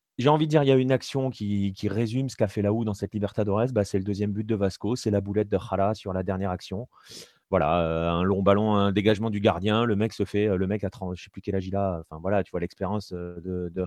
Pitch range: 95-110 Hz